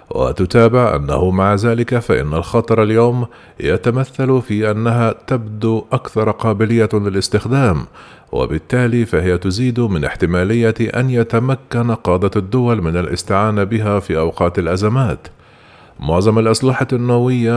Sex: male